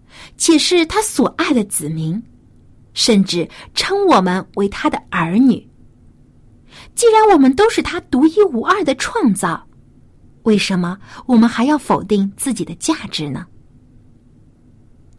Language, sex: Chinese, female